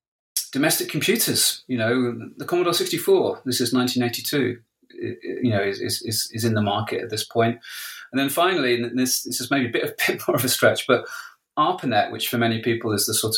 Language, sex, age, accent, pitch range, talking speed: English, male, 30-49, British, 105-125 Hz, 225 wpm